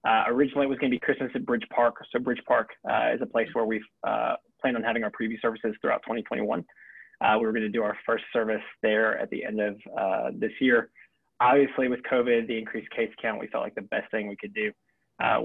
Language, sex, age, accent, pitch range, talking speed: English, male, 20-39, American, 110-135 Hz, 245 wpm